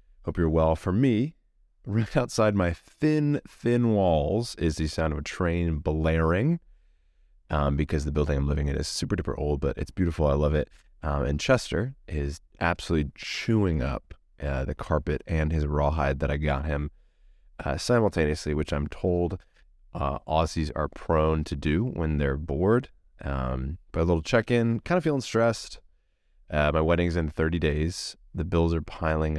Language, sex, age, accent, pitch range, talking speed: English, male, 30-49, American, 75-100 Hz, 175 wpm